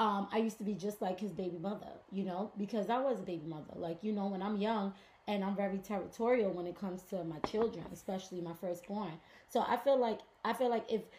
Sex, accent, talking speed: female, American, 240 wpm